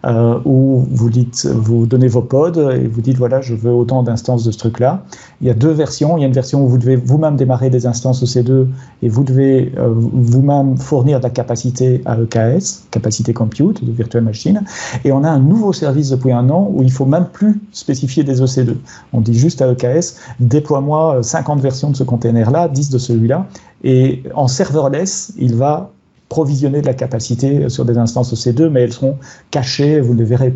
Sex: male